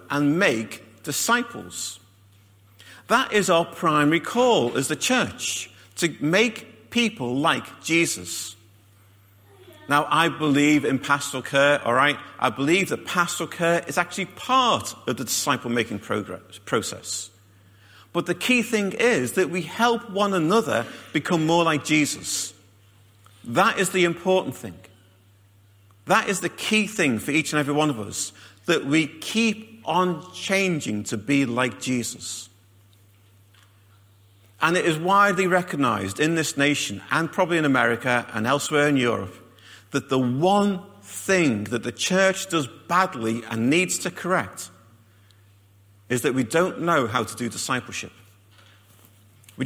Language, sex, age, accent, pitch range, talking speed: English, male, 50-69, British, 100-170 Hz, 140 wpm